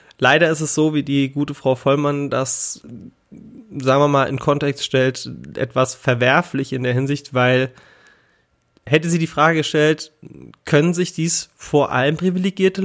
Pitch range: 130-170 Hz